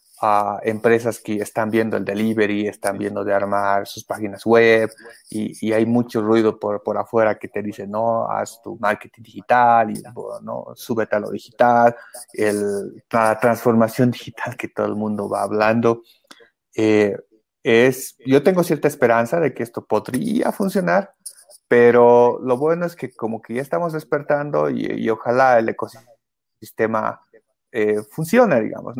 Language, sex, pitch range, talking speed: Spanish, male, 110-130 Hz, 155 wpm